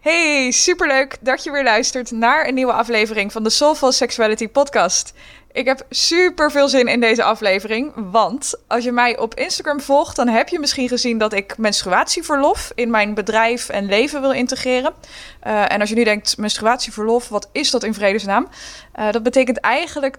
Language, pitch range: Dutch, 225-280 Hz